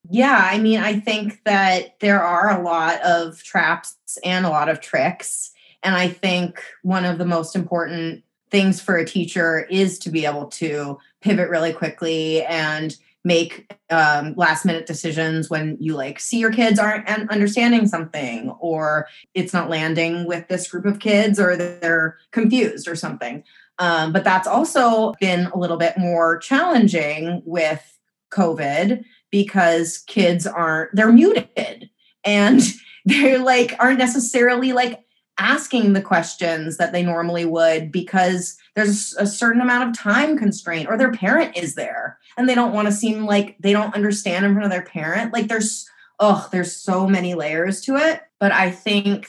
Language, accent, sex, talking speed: English, American, female, 165 wpm